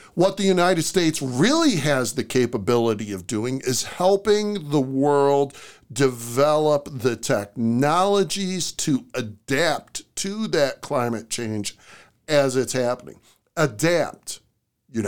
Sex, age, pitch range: male, 50-69, 120-175 Hz